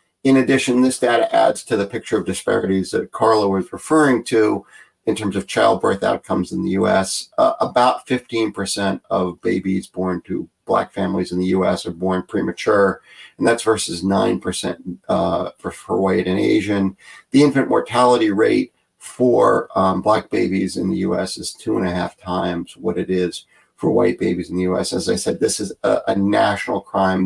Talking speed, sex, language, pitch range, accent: 185 wpm, male, English, 95-125 Hz, American